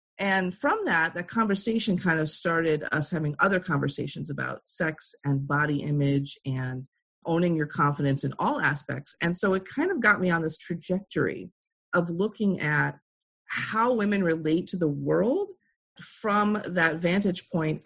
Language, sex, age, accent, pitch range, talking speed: English, female, 30-49, American, 155-205 Hz, 160 wpm